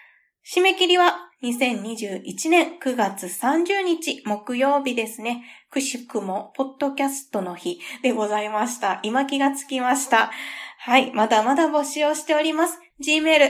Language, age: Japanese, 20-39